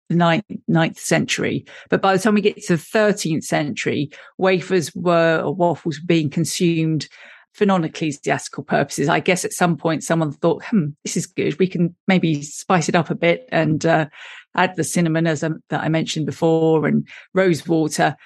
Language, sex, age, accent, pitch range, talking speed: English, female, 40-59, British, 155-185 Hz, 185 wpm